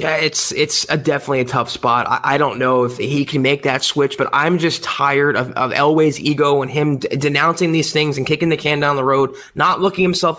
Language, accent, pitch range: English, American, 150-190 Hz